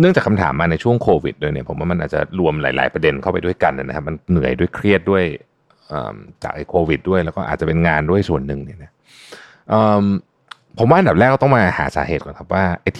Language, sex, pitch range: Thai, male, 80-110 Hz